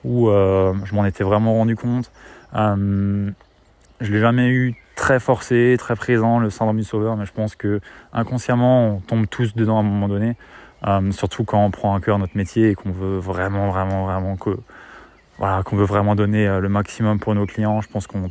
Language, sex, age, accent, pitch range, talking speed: French, male, 20-39, French, 100-110 Hz, 205 wpm